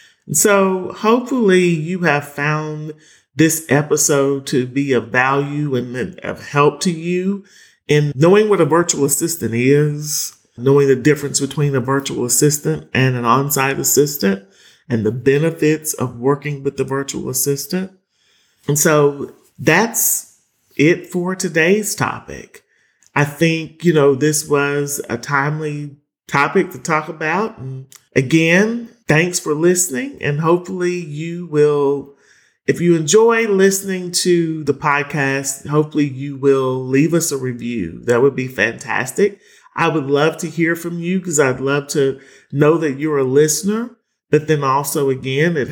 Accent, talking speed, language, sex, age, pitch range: American, 145 wpm, English, male, 40-59, 140-175 Hz